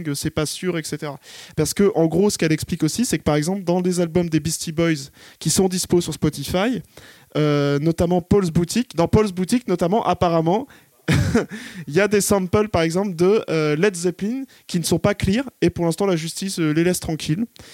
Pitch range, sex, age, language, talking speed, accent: 165-200 Hz, male, 20-39, French, 205 wpm, French